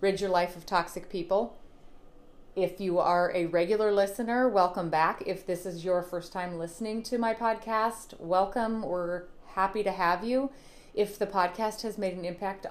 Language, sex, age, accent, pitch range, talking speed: English, female, 30-49, American, 165-195 Hz, 175 wpm